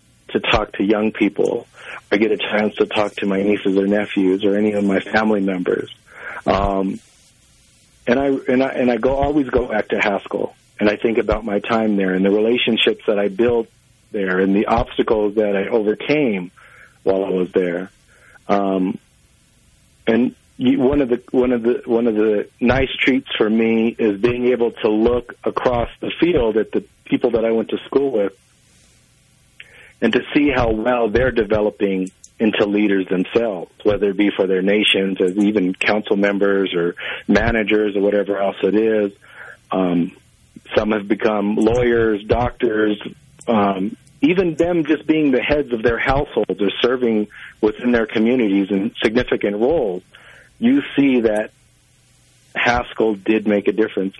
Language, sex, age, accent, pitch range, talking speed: English, male, 50-69, American, 100-120 Hz, 165 wpm